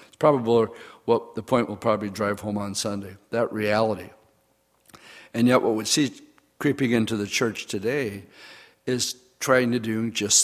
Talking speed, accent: 155 wpm, American